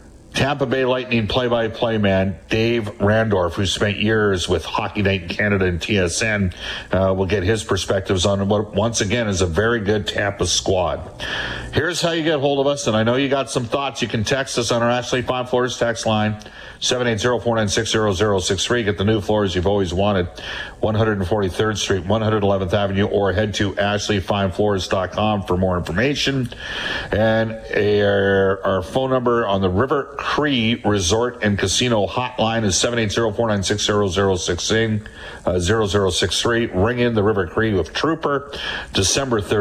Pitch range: 100-115 Hz